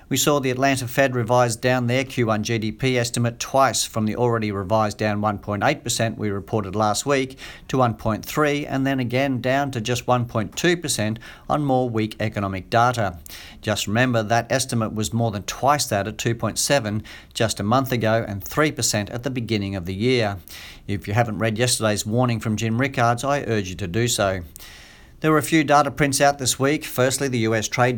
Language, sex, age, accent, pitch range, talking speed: English, male, 50-69, Australian, 105-130 Hz, 185 wpm